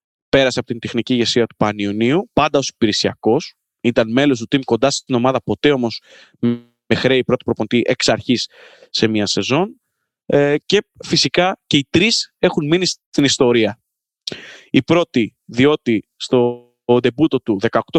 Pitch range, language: 110-145 Hz, Greek